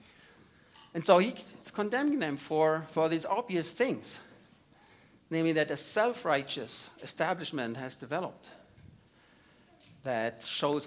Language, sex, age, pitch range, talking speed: English, male, 60-79, 150-200 Hz, 105 wpm